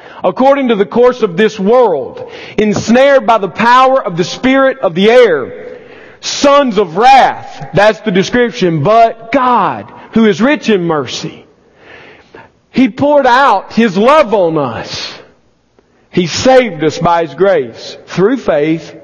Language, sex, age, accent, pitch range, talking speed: English, male, 40-59, American, 160-225 Hz, 140 wpm